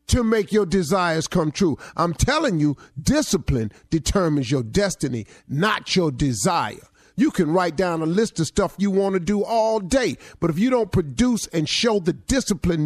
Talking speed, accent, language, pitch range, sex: 175 wpm, American, English, 115-165 Hz, male